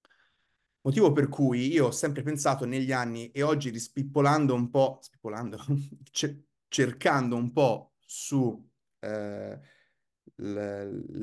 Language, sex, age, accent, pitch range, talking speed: Italian, male, 30-49, native, 120-145 Hz, 105 wpm